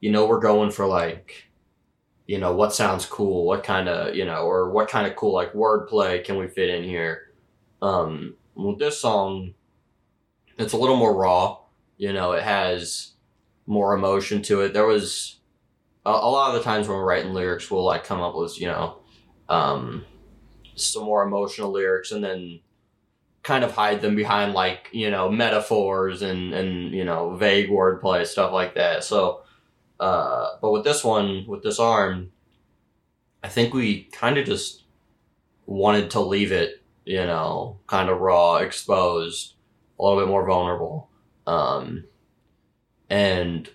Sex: male